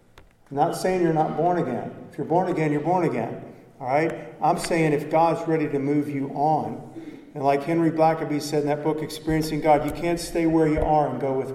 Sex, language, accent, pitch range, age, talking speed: male, English, American, 135-165 Hz, 50-69, 225 wpm